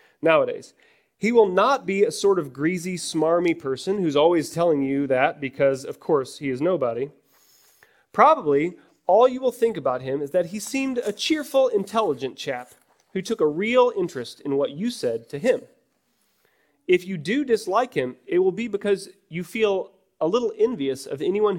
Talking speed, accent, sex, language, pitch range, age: 180 wpm, American, male, English, 125-190 Hz, 30-49